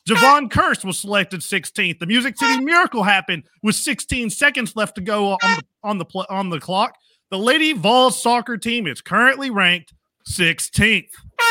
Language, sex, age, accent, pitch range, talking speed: English, male, 40-59, American, 210-300 Hz, 155 wpm